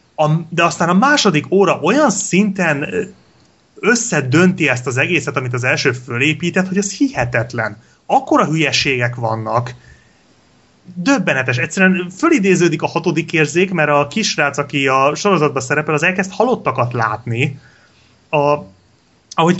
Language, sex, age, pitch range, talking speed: Hungarian, male, 30-49, 135-185 Hz, 125 wpm